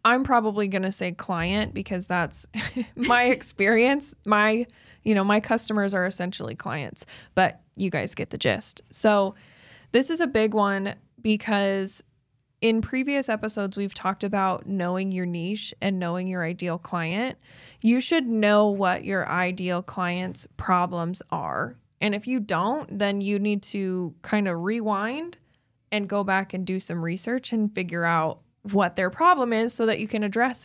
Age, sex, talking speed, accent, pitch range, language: 10-29, female, 165 wpm, American, 180-215 Hz, English